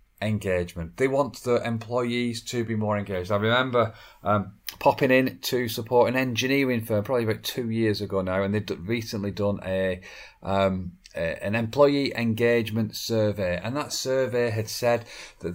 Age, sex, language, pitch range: 40-59, male, English, 100-125 Hz